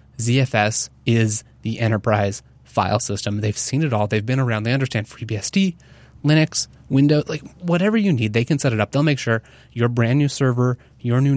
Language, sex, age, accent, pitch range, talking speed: English, male, 20-39, American, 110-145 Hz, 190 wpm